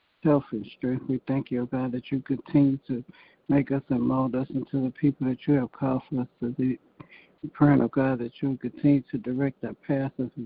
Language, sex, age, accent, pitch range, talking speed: English, male, 60-79, American, 130-140 Hz, 235 wpm